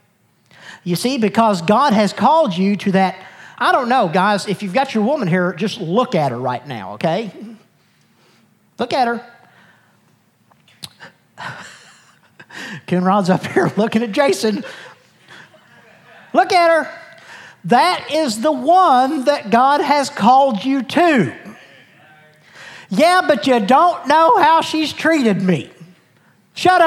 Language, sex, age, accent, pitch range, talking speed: English, male, 50-69, American, 200-310 Hz, 130 wpm